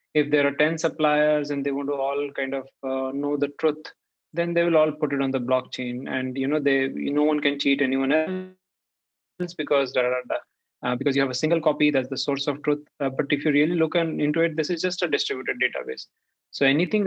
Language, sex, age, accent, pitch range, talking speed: English, male, 20-39, Indian, 135-155 Hz, 245 wpm